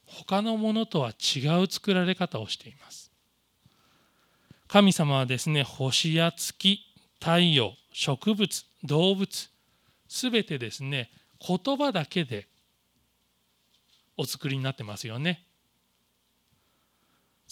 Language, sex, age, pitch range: Japanese, male, 40-59, 135-205 Hz